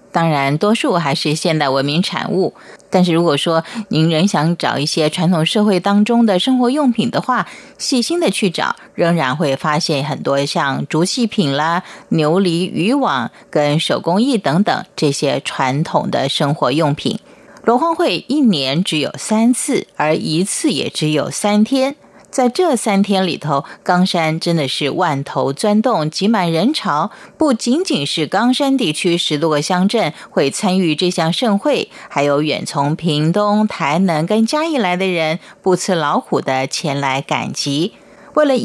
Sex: female